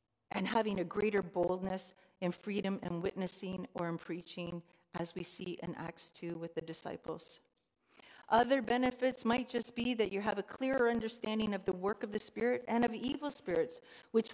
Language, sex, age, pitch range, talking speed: English, female, 50-69, 175-225 Hz, 180 wpm